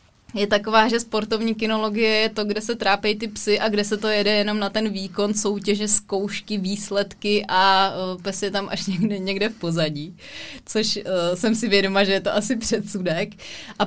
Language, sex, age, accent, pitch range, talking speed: Czech, female, 20-39, native, 195-225 Hz, 195 wpm